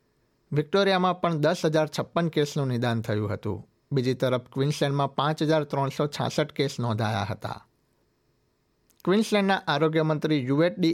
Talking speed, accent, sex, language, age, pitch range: 120 wpm, native, male, Gujarati, 60-79, 125-155 Hz